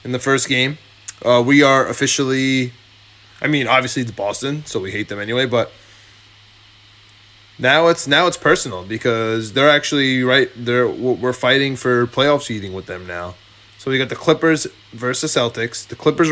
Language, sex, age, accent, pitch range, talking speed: English, male, 20-39, American, 105-135 Hz, 170 wpm